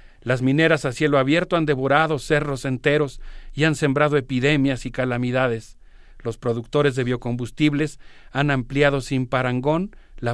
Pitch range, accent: 130-150 Hz, Mexican